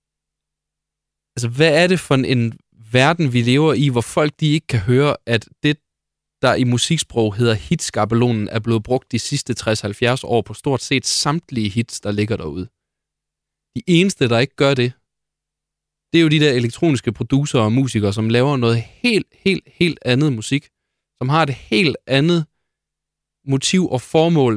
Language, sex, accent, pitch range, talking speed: Danish, male, native, 115-150 Hz, 170 wpm